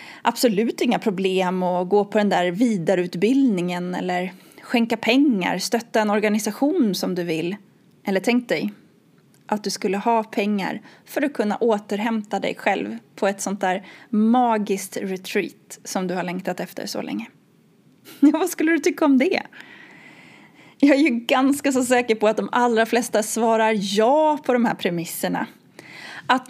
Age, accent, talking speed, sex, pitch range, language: 20-39, native, 155 wpm, female, 195-270 Hz, Swedish